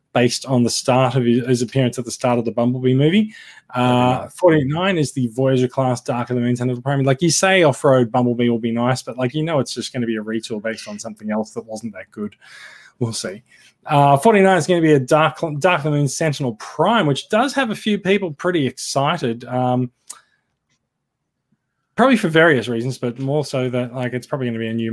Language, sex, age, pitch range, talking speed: English, male, 20-39, 120-145 Hz, 230 wpm